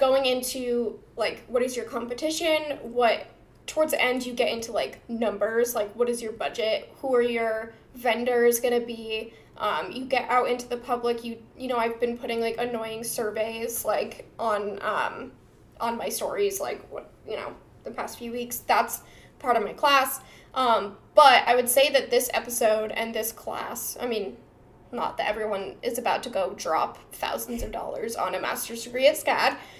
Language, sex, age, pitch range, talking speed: English, female, 10-29, 230-280 Hz, 185 wpm